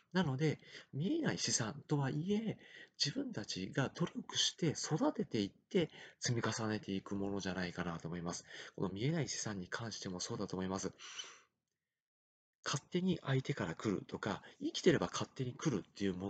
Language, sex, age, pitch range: Japanese, male, 40-59, 100-160 Hz